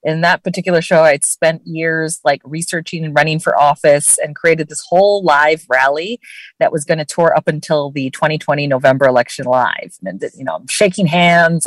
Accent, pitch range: American, 155-195 Hz